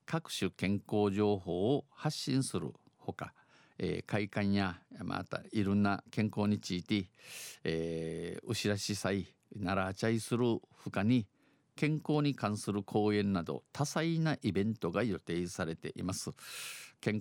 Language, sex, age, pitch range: Japanese, male, 50-69, 90-120 Hz